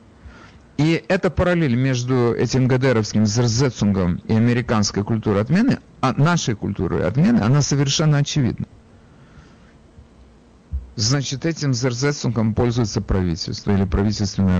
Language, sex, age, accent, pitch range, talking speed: Russian, male, 50-69, native, 95-130 Hz, 105 wpm